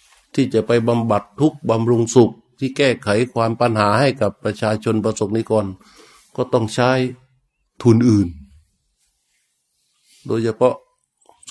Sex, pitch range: male, 100-130 Hz